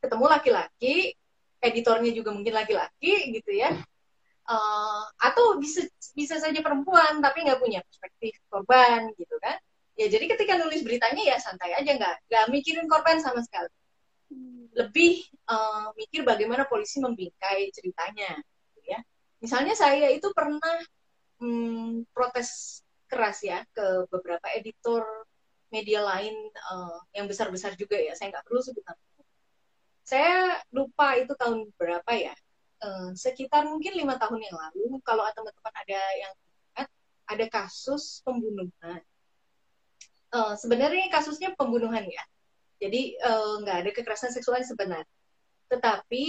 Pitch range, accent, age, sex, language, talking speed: 215-290 Hz, native, 20-39, female, Indonesian, 125 wpm